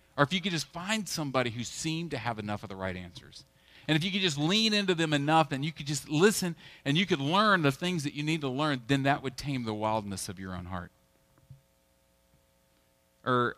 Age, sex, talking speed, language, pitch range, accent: 40-59, male, 230 wpm, English, 100-150 Hz, American